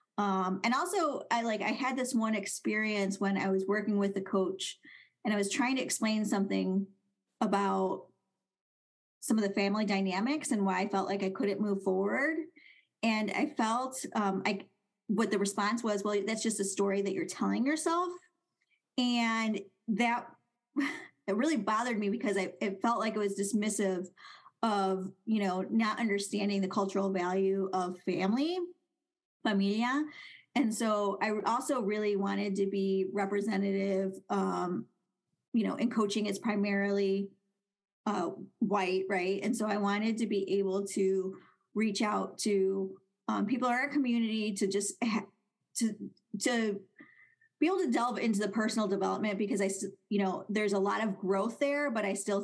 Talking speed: 165 wpm